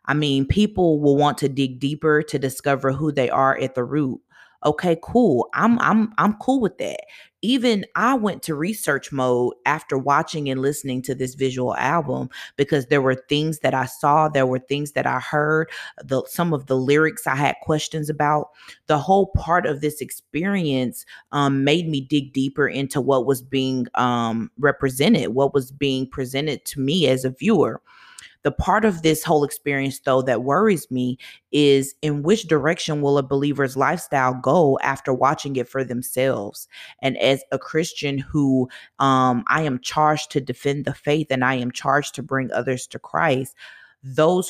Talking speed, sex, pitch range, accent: 180 wpm, female, 130-155 Hz, American